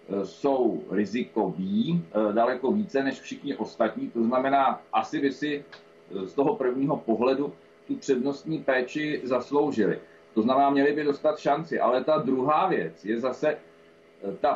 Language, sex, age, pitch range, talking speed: Czech, male, 40-59, 125-155 Hz, 135 wpm